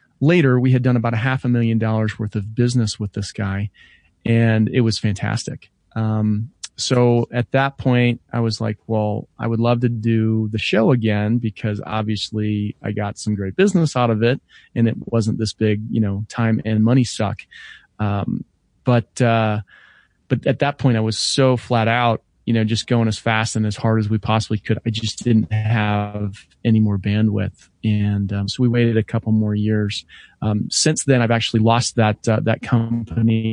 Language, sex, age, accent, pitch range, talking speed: English, male, 30-49, American, 105-120 Hz, 195 wpm